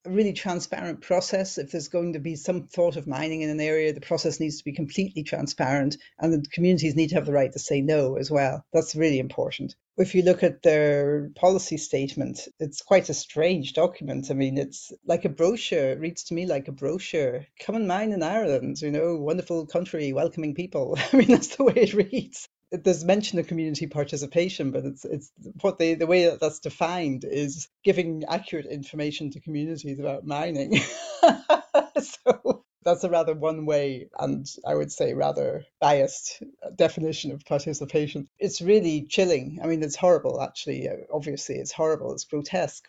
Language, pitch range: English, 145-185 Hz